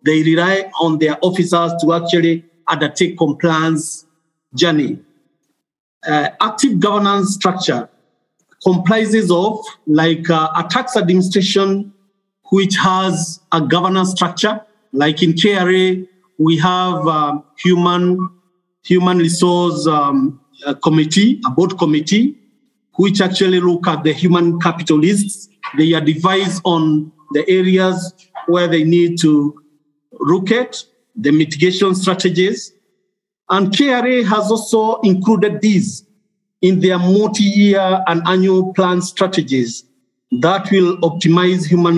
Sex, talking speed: male, 115 wpm